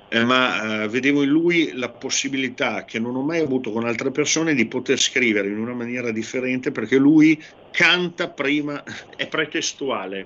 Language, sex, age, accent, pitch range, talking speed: Italian, male, 50-69, native, 110-145 Hz, 170 wpm